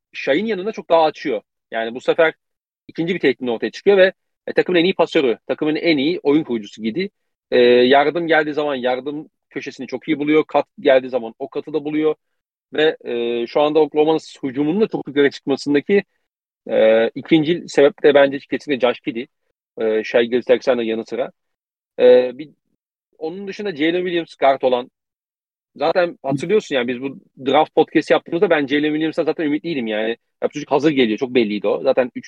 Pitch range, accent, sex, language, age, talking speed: 130-170 Hz, native, male, Turkish, 40-59, 175 wpm